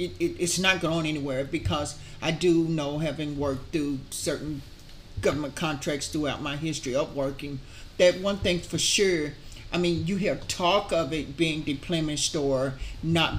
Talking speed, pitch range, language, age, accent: 155 wpm, 145-185 Hz, English, 50-69, American